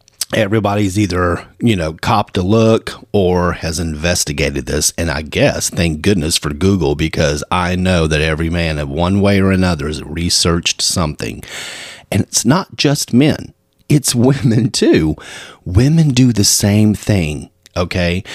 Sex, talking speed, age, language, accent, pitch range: male, 150 wpm, 40-59, English, American, 85-115 Hz